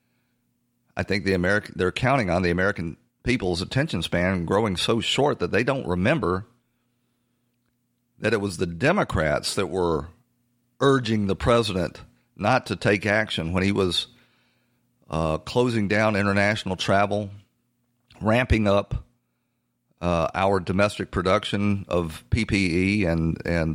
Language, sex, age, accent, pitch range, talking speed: English, male, 40-59, American, 90-120 Hz, 130 wpm